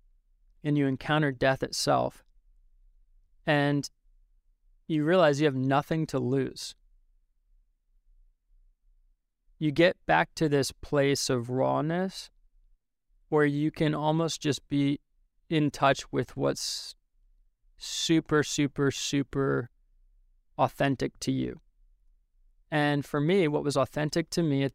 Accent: American